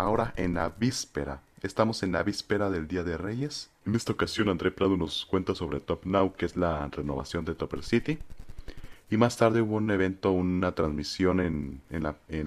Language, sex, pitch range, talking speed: Spanish, male, 85-115 Hz, 195 wpm